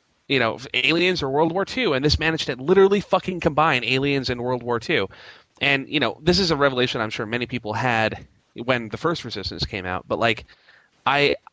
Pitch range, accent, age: 105-140 Hz, American, 30-49